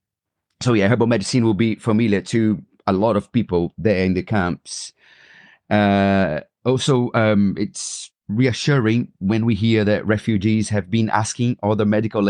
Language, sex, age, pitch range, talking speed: English, male, 30-49, 100-115 Hz, 150 wpm